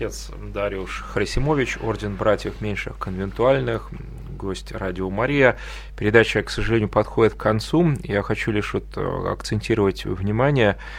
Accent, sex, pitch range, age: native, male, 100-135 Hz, 20-39